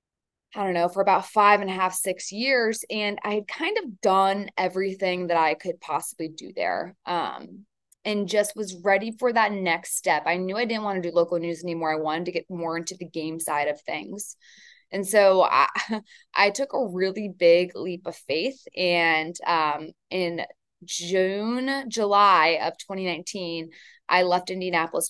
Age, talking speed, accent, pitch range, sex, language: 20-39, 180 wpm, American, 170-200 Hz, female, English